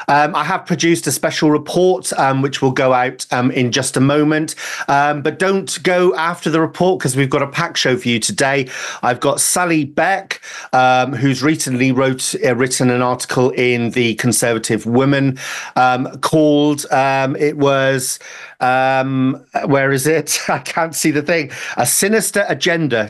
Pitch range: 120-150 Hz